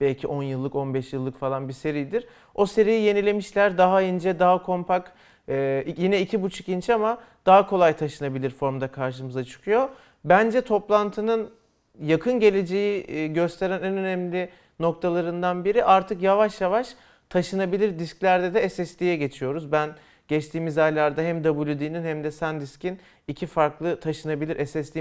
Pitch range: 150-190 Hz